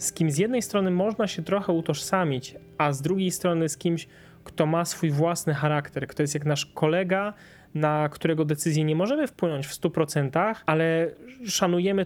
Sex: male